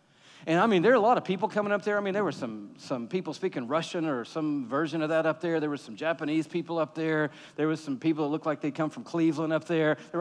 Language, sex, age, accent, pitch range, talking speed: English, male, 40-59, American, 165-240 Hz, 290 wpm